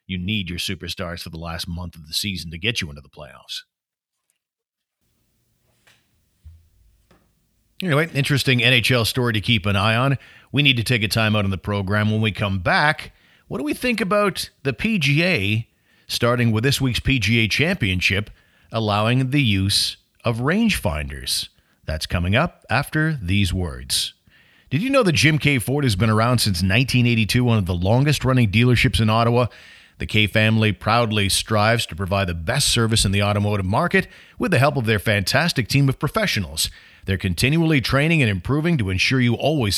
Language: English